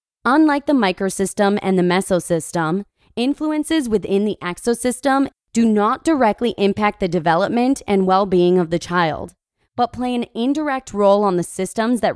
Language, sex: English, female